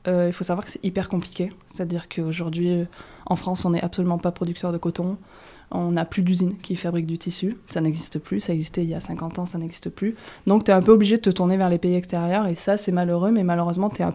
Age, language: 20-39, French